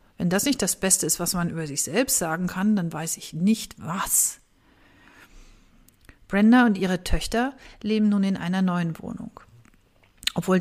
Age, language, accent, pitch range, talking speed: 40-59, English, German, 180-210 Hz, 165 wpm